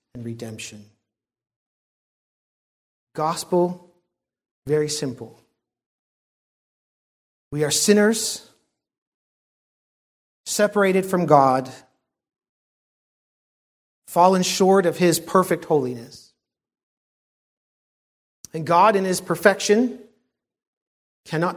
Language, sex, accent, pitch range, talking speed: English, male, American, 120-175 Hz, 65 wpm